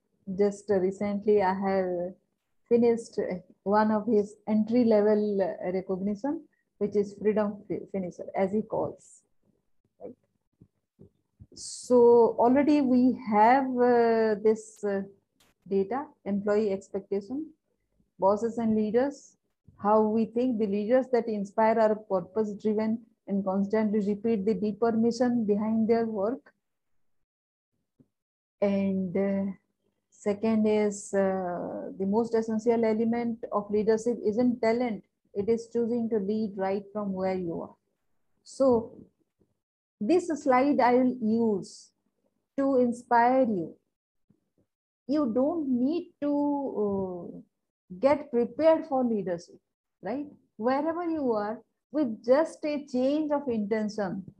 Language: English